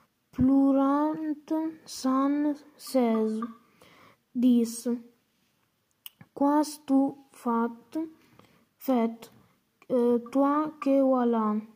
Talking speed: 50 wpm